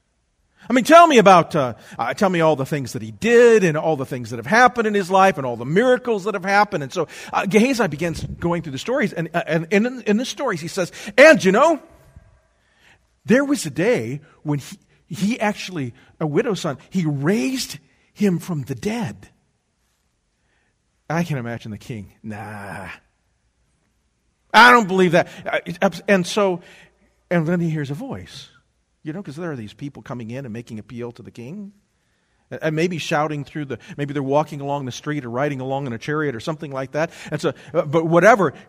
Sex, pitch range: male, 135-205 Hz